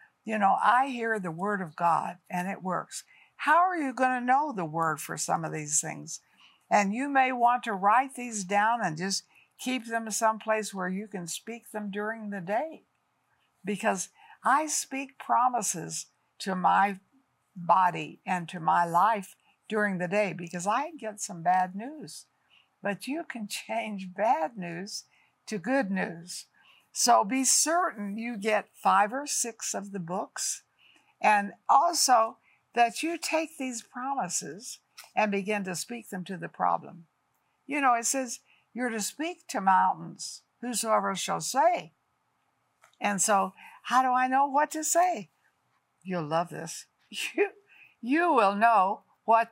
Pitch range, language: 185-255 Hz, English